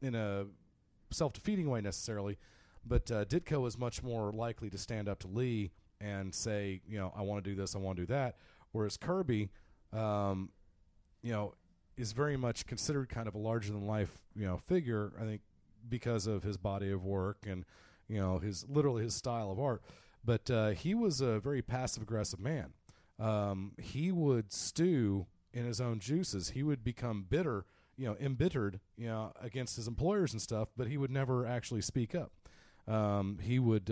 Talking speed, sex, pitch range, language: 185 wpm, male, 95-120 Hz, English